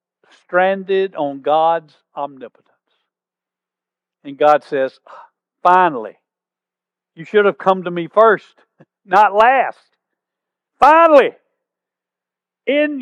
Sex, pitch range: male, 170-250 Hz